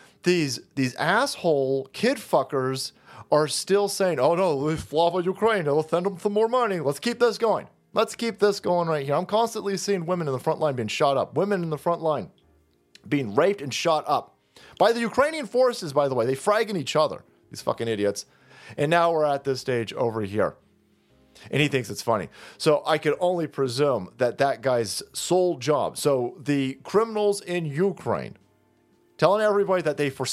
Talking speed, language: 195 wpm, English